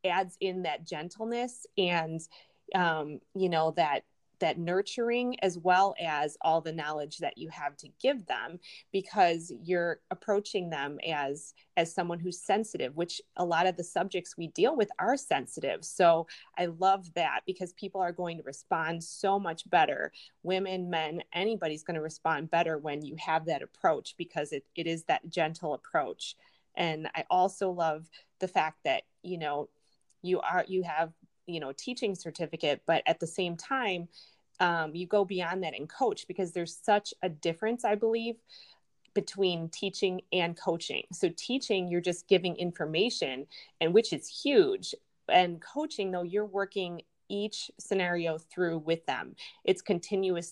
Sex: female